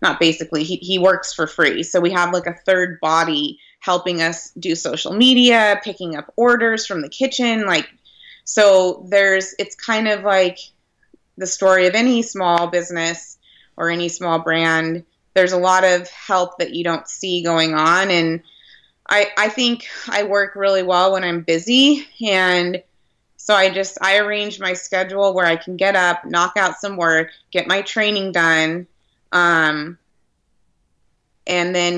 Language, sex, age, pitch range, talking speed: English, female, 20-39, 170-200 Hz, 165 wpm